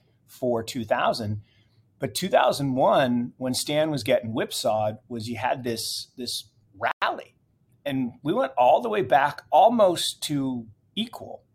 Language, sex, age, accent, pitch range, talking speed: English, male, 40-59, American, 115-140 Hz, 130 wpm